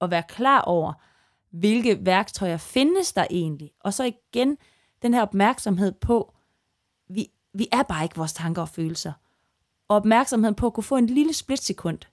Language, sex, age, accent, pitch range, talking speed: Danish, female, 20-39, native, 180-235 Hz, 170 wpm